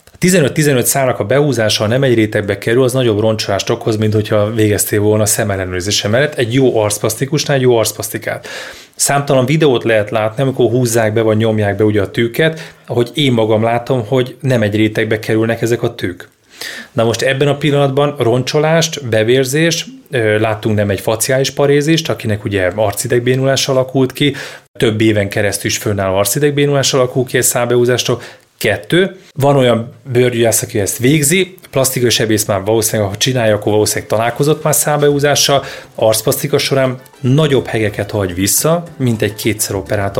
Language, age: Hungarian, 30-49